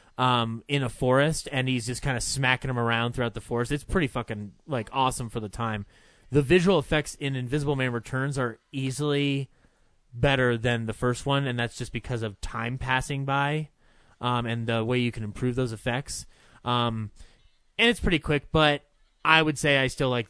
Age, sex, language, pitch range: 20-39, male, English, 120-155 Hz